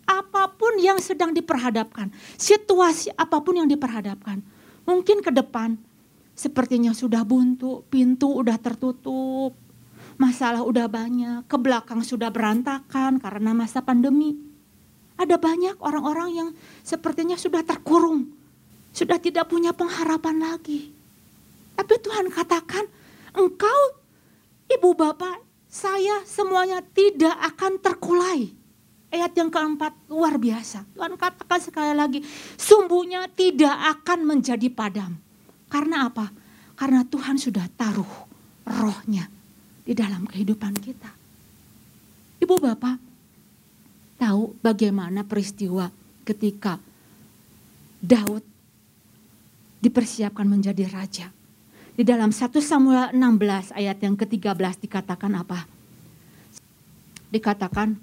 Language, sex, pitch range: Indonesian, female, 215-335 Hz